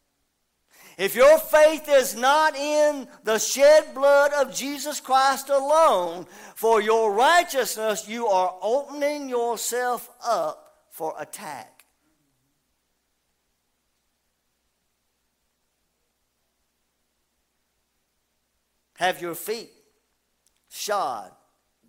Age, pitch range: 50-69, 185-285 Hz